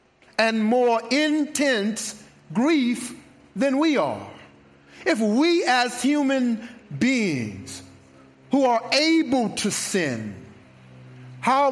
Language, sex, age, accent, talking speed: English, male, 50-69, American, 90 wpm